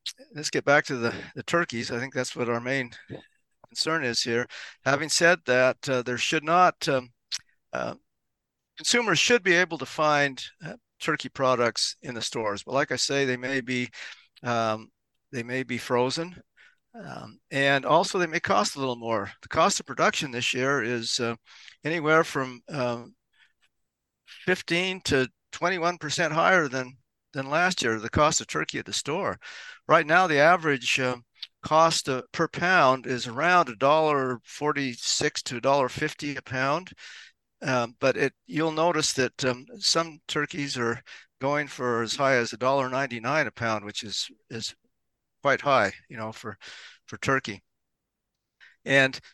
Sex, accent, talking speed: male, American, 165 wpm